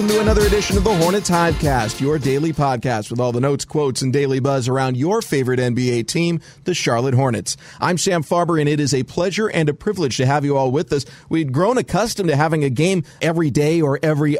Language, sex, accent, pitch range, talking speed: English, male, American, 130-160 Hz, 235 wpm